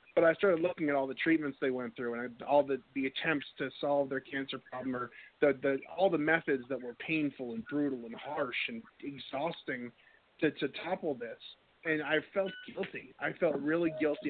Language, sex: English, male